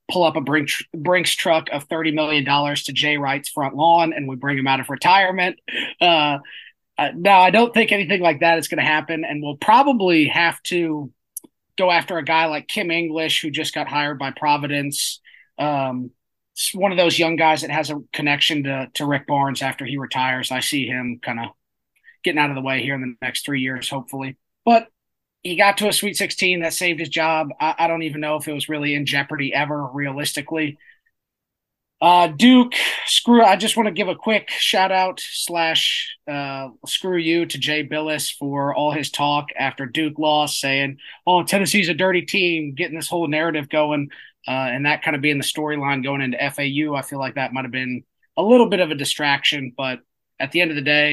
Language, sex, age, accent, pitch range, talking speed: English, male, 20-39, American, 140-170 Hz, 210 wpm